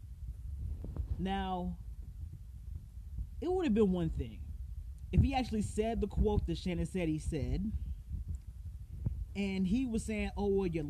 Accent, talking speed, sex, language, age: American, 140 wpm, male, English, 30-49